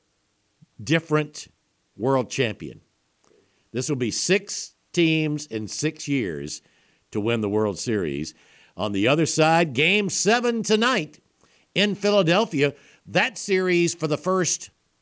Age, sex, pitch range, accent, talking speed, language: 60-79, male, 120-170 Hz, American, 120 wpm, English